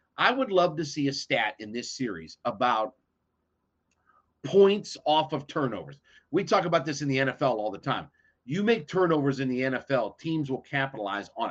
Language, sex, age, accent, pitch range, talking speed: English, male, 40-59, American, 125-165 Hz, 180 wpm